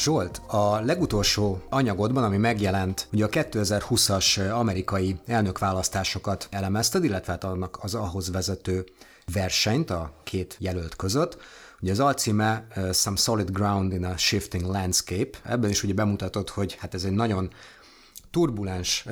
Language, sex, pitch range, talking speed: Hungarian, male, 90-110 Hz, 135 wpm